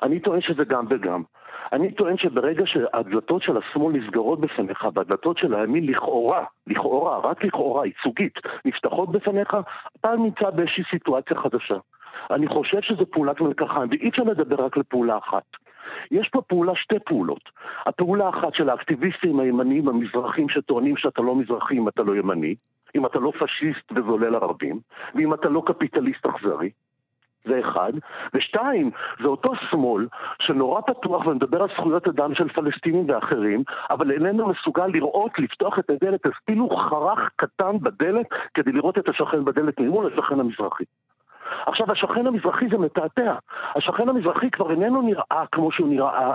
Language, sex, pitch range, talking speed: Hebrew, male, 140-205 Hz, 145 wpm